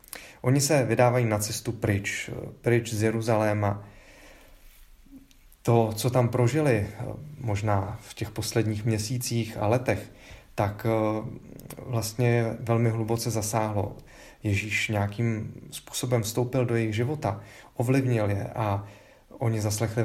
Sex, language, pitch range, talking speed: male, Czech, 105-120 Hz, 110 wpm